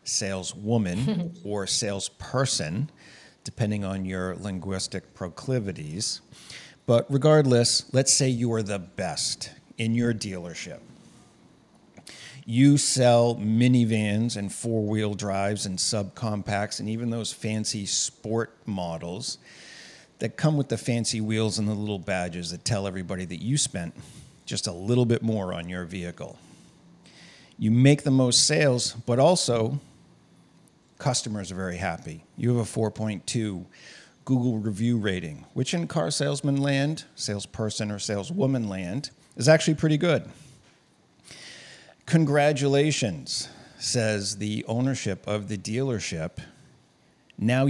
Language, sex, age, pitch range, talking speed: English, male, 50-69, 100-130 Hz, 120 wpm